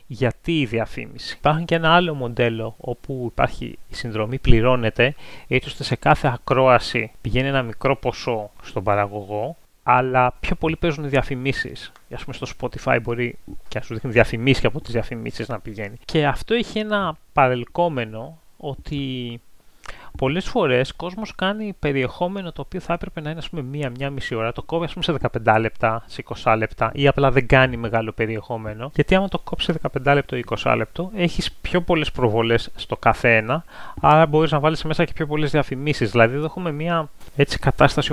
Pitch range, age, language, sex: 115-150 Hz, 30-49, Greek, male